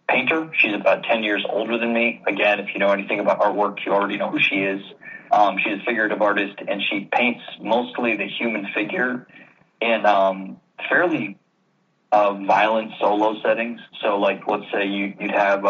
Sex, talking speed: male, 180 wpm